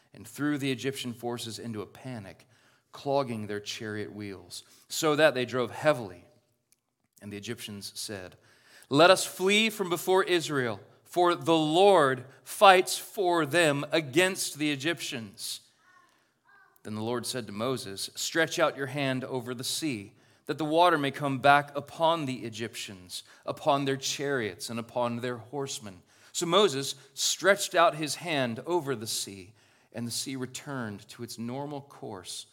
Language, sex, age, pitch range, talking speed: English, male, 40-59, 110-145 Hz, 150 wpm